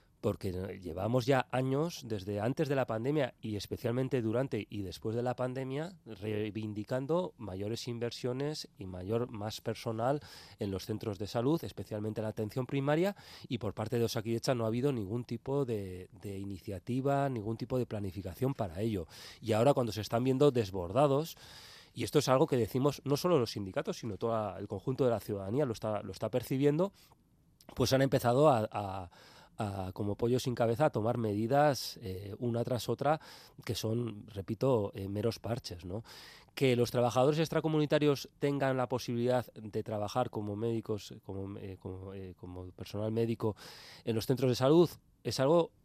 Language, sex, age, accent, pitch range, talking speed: Spanish, male, 30-49, Spanish, 105-135 Hz, 170 wpm